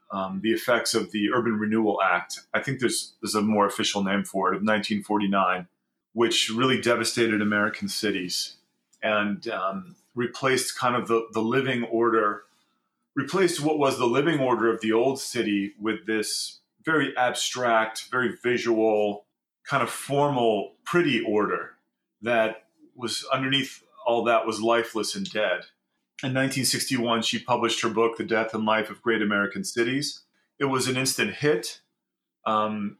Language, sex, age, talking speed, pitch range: English, male, 30-49, 155 wpm, 105-125 Hz